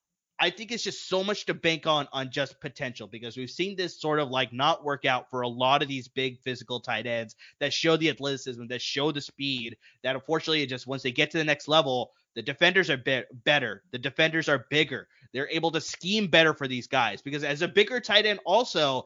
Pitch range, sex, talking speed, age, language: 135-170 Hz, male, 225 wpm, 20-39, English